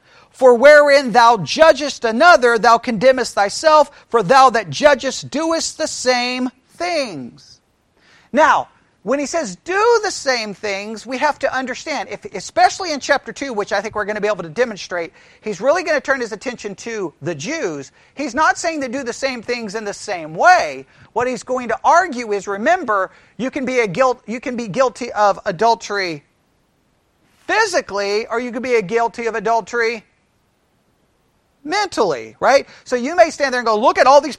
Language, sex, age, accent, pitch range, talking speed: English, male, 40-59, American, 210-290 Hz, 185 wpm